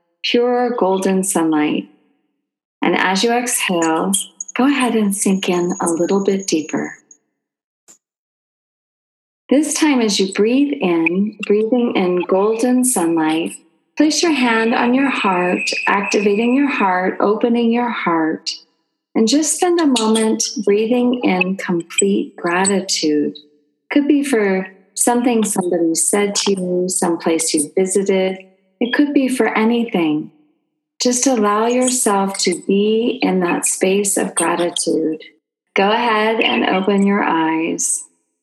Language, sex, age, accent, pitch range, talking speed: English, female, 40-59, American, 185-235 Hz, 125 wpm